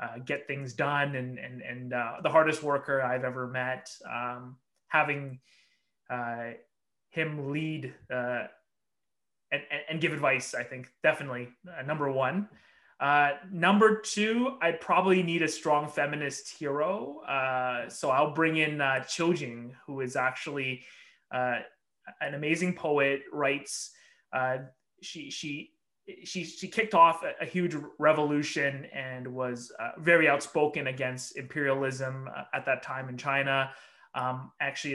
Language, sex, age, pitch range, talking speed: English, male, 20-39, 130-155 Hz, 135 wpm